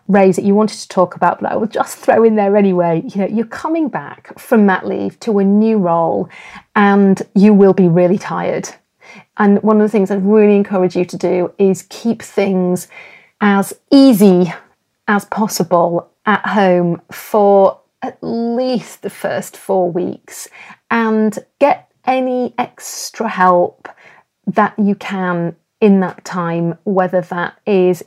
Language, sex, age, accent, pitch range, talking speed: English, female, 30-49, British, 180-205 Hz, 160 wpm